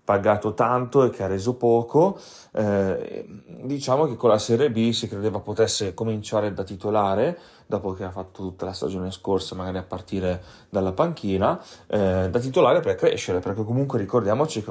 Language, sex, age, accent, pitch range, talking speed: Italian, male, 30-49, native, 100-115 Hz, 170 wpm